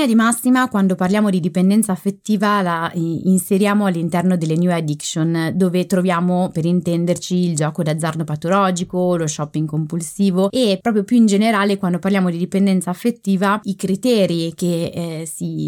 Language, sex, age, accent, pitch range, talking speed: Italian, female, 20-39, native, 170-205 Hz, 150 wpm